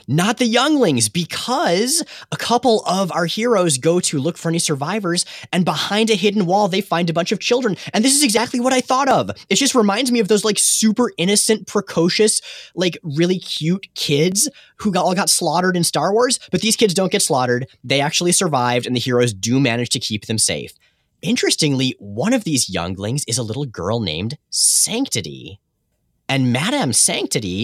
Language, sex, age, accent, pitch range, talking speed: English, male, 20-39, American, 125-190 Hz, 190 wpm